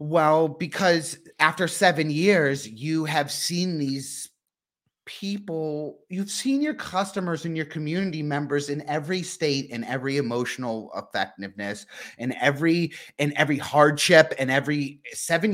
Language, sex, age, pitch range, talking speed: English, male, 30-49, 140-190 Hz, 125 wpm